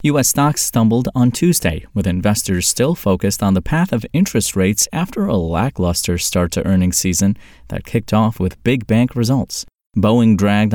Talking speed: 175 wpm